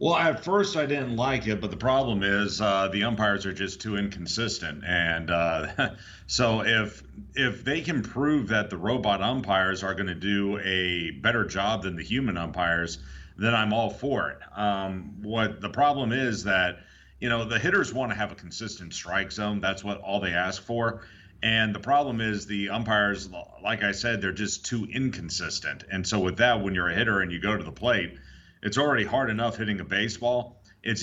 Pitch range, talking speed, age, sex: 95-110 Hz, 200 wpm, 40-59, male